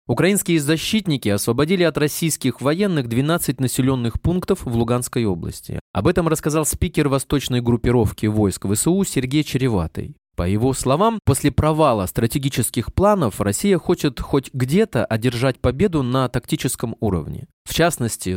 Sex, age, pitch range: male, 20-39, 115-160 Hz